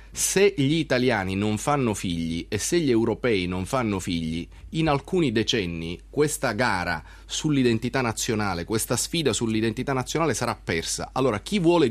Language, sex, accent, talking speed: Italian, male, native, 145 wpm